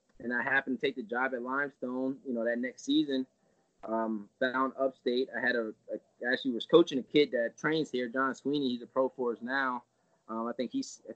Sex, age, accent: male, 20-39, American